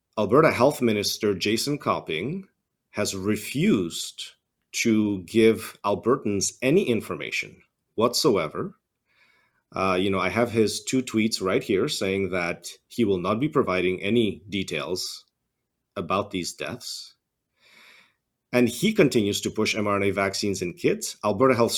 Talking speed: 125 wpm